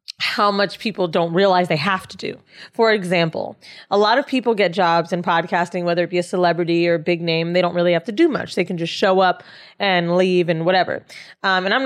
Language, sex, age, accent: English, female, 20-39, American